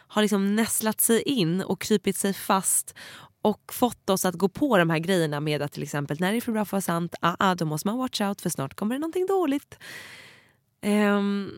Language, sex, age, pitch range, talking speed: English, female, 20-39, 160-205 Hz, 230 wpm